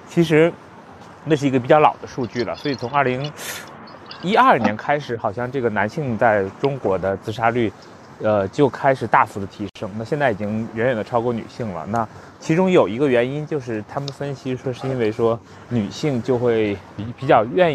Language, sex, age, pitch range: Chinese, male, 20-39, 110-140 Hz